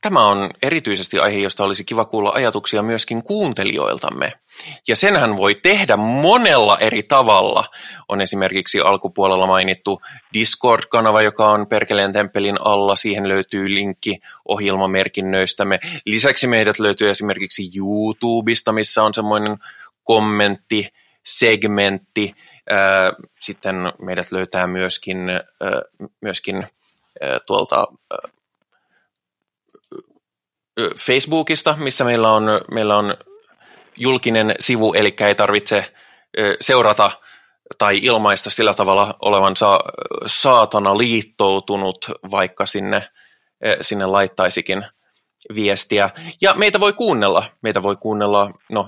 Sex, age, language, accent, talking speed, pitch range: male, 20-39, Finnish, native, 100 wpm, 100-115 Hz